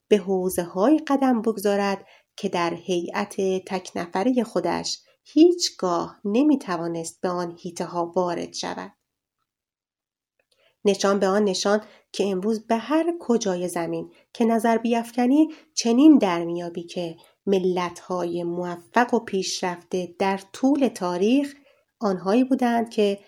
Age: 30-49